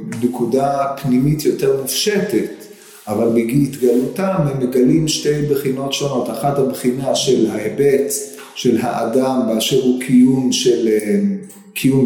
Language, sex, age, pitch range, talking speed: Hebrew, male, 40-59, 125-180 Hz, 110 wpm